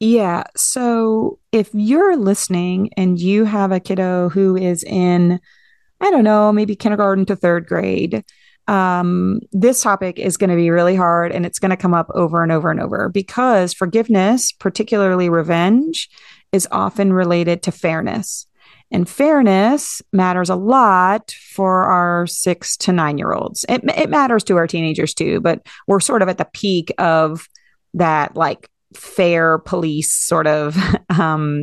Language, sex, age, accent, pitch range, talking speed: English, female, 30-49, American, 175-220 Hz, 155 wpm